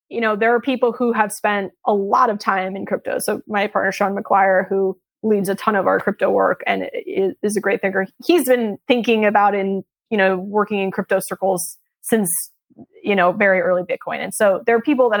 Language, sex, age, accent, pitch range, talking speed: English, female, 20-39, American, 195-235 Hz, 215 wpm